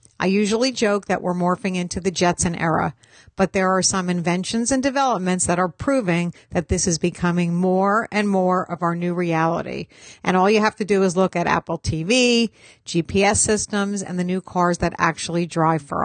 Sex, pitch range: female, 175-210 Hz